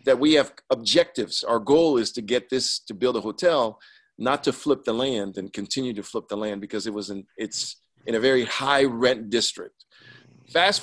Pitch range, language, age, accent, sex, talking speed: 110-140 Hz, English, 50-69, American, male, 205 wpm